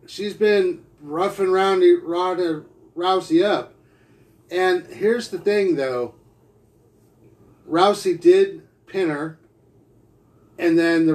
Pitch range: 150-205 Hz